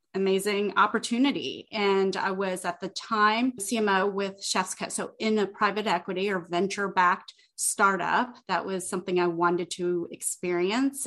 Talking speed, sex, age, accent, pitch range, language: 150 wpm, female, 30-49, American, 180-230 Hz, English